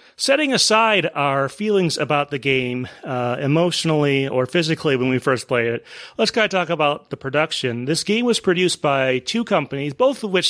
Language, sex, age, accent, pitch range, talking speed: English, male, 30-49, American, 125-155 Hz, 190 wpm